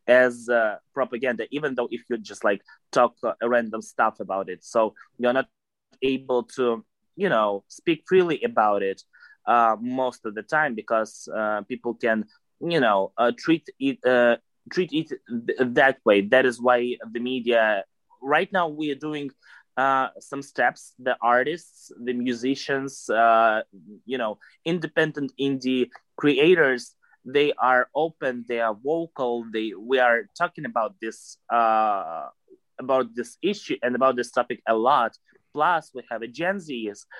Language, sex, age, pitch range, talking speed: English, male, 20-39, 115-145 Hz, 155 wpm